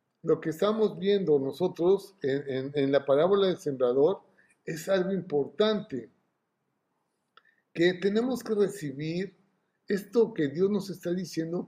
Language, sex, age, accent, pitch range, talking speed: Spanish, male, 50-69, Mexican, 160-210 Hz, 130 wpm